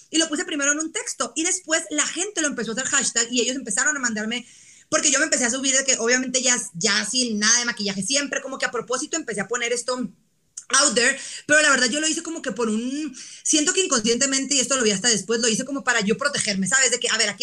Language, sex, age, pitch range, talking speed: Spanish, female, 30-49, 230-290 Hz, 270 wpm